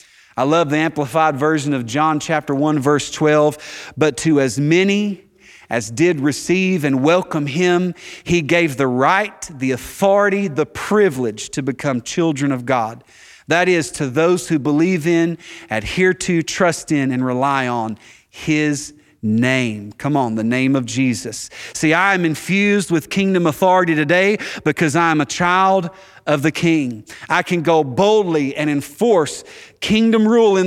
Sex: male